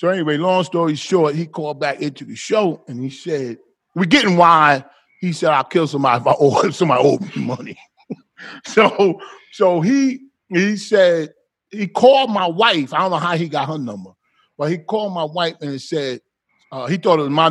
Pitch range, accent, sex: 140-190 Hz, American, male